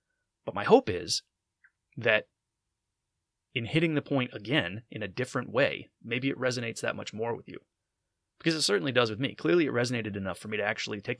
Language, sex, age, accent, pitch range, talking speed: English, male, 30-49, American, 105-140 Hz, 200 wpm